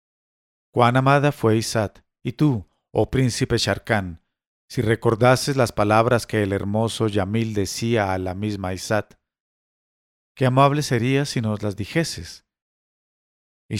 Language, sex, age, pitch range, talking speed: English, male, 50-69, 95-120 Hz, 130 wpm